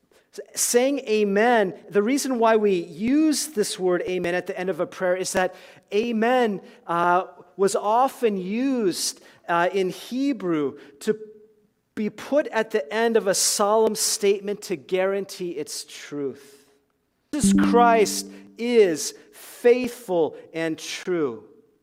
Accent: American